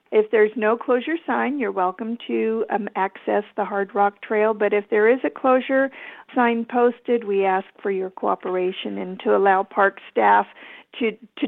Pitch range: 195-235 Hz